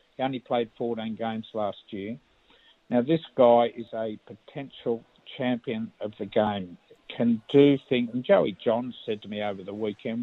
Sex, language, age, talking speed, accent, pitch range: male, English, 50-69, 165 wpm, Australian, 110-130 Hz